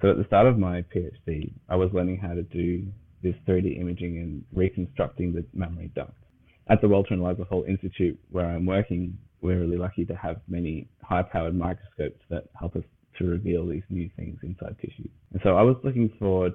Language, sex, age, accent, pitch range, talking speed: English, male, 20-39, Australian, 85-100 Hz, 200 wpm